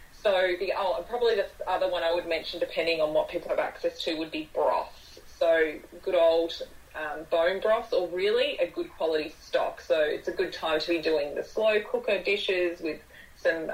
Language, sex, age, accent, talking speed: English, female, 20-39, Australian, 205 wpm